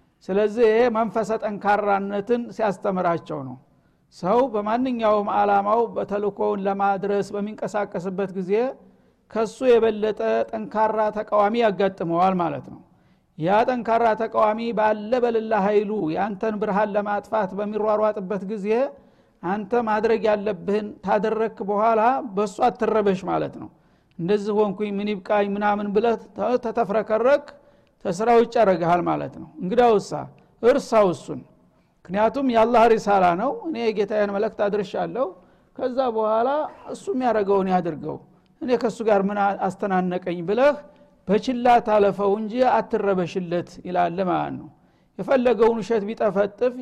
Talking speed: 105 wpm